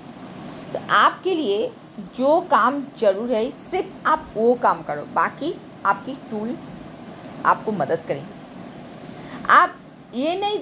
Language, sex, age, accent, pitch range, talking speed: Hindi, female, 50-69, native, 215-305 Hz, 120 wpm